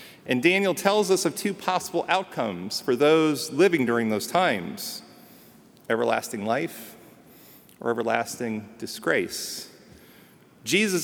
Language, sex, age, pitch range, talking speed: English, male, 40-59, 120-160 Hz, 110 wpm